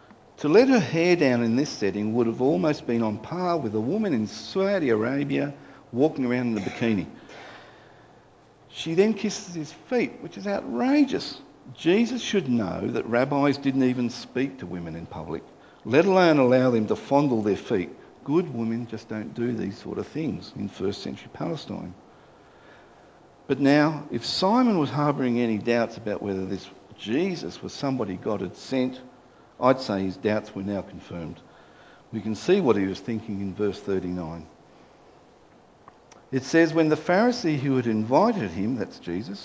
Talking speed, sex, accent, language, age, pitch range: 170 wpm, male, Australian, English, 50-69, 110-165 Hz